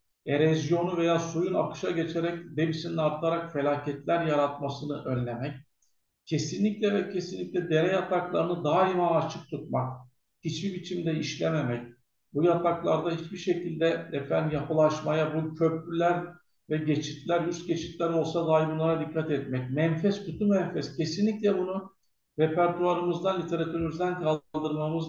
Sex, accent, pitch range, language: male, native, 150-175 Hz, Turkish